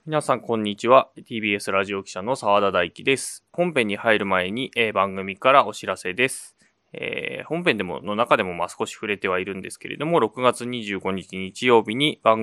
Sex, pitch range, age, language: male, 100-125 Hz, 20-39, Japanese